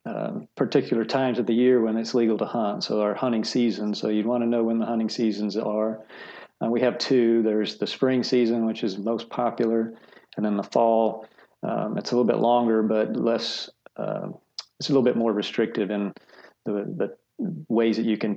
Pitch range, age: 110-120 Hz, 40-59